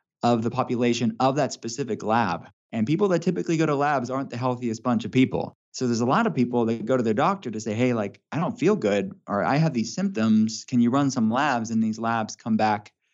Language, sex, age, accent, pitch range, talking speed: English, male, 20-39, American, 110-130 Hz, 245 wpm